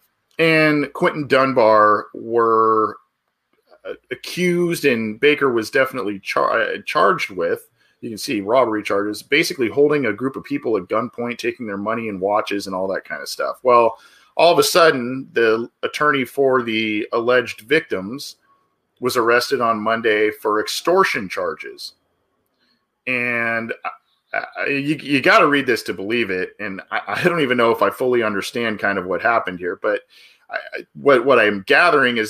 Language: English